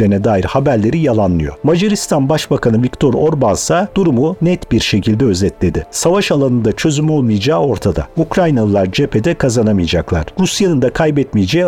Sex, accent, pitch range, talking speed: male, native, 110-165 Hz, 125 wpm